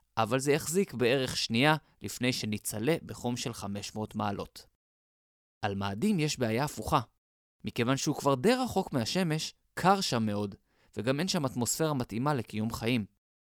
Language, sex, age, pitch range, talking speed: Hebrew, male, 20-39, 110-160 Hz, 140 wpm